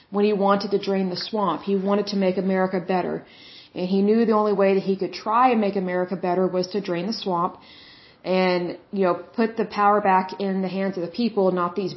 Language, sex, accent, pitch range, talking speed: Bengali, female, American, 185-210 Hz, 235 wpm